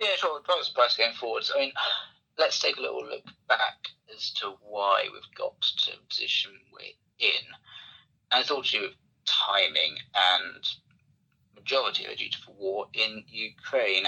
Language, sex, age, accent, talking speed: English, male, 30-49, British, 175 wpm